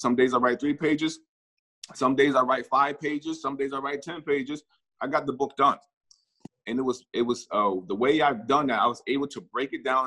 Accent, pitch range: American, 120-150 Hz